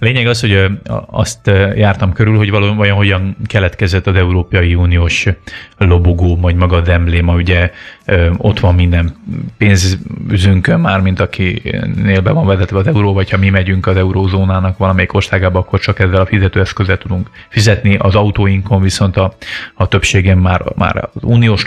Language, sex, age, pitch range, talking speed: Hungarian, male, 30-49, 95-105 Hz, 155 wpm